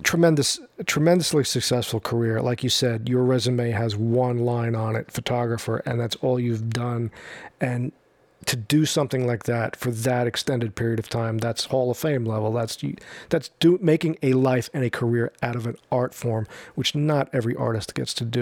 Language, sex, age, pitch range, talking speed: English, male, 40-59, 115-145 Hz, 190 wpm